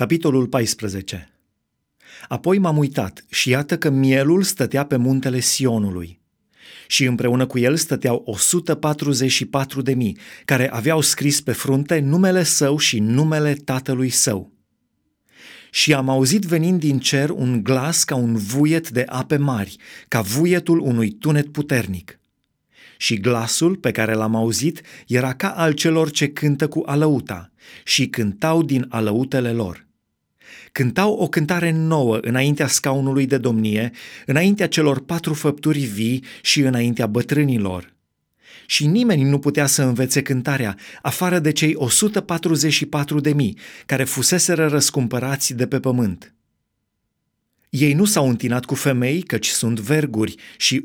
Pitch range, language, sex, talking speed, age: 120-155 Hz, Romanian, male, 135 wpm, 30-49